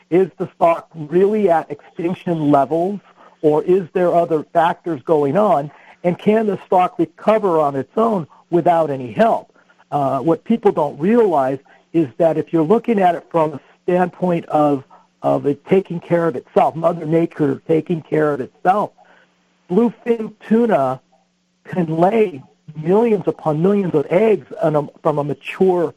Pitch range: 150-200 Hz